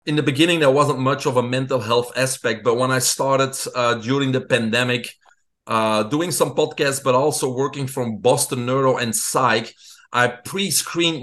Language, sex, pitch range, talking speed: English, male, 125-150 Hz, 175 wpm